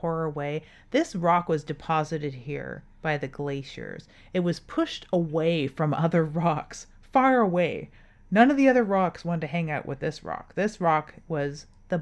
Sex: female